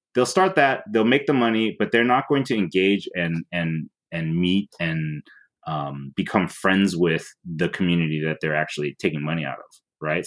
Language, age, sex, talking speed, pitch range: English, 30-49, male, 185 wpm, 80-90 Hz